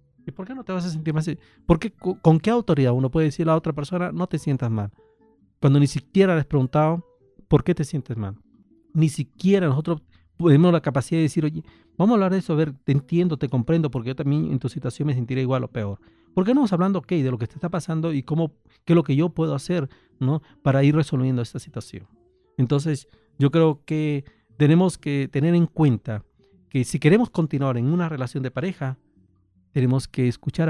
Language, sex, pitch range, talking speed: English, male, 125-170 Hz, 230 wpm